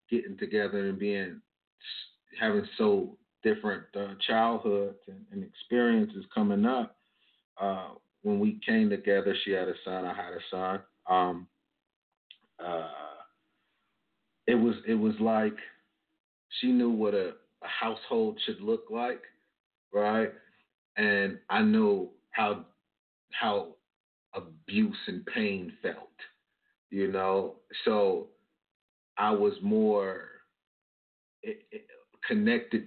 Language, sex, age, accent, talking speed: English, male, 40-59, American, 110 wpm